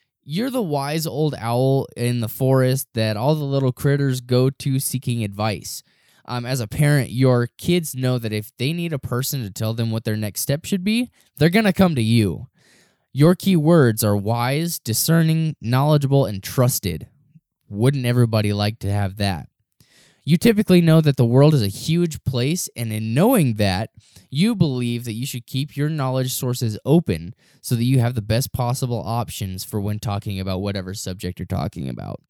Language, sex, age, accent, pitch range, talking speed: English, male, 20-39, American, 110-145 Hz, 190 wpm